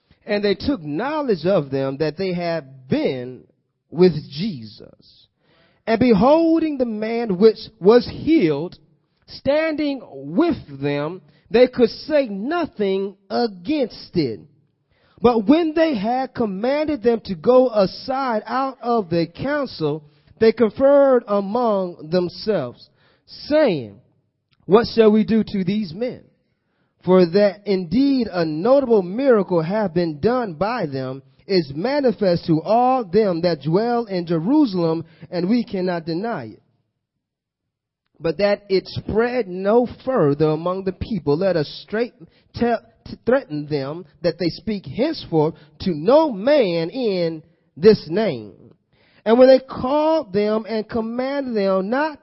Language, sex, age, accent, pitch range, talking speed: English, male, 30-49, American, 165-245 Hz, 130 wpm